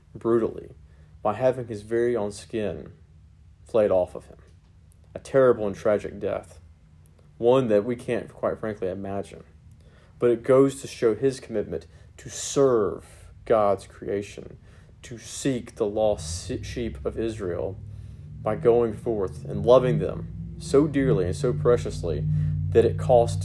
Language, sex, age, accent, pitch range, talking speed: English, male, 40-59, American, 90-120 Hz, 140 wpm